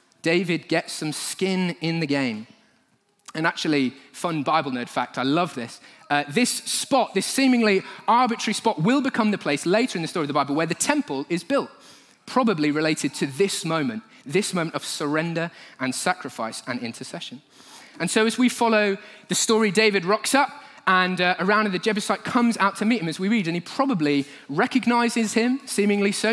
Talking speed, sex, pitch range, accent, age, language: 185 wpm, male, 165-240 Hz, British, 30-49, English